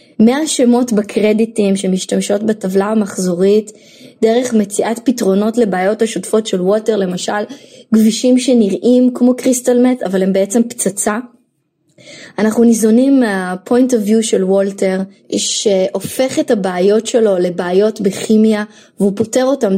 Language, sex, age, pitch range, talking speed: Hebrew, female, 20-39, 200-250 Hz, 115 wpm